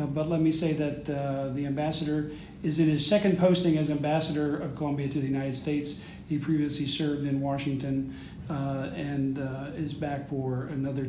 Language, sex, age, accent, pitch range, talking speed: English, male, 50-69, American, 135-155 Hz, 185 wpm